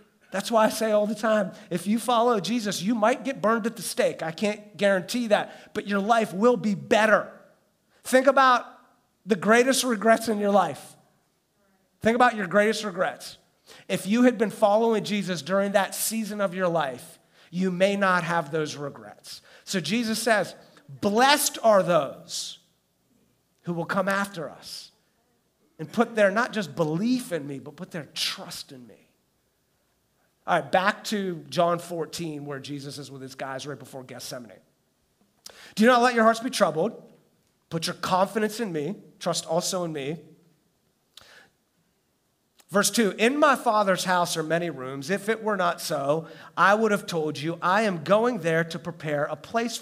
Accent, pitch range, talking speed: American, 165-220 Hz, 170 wpm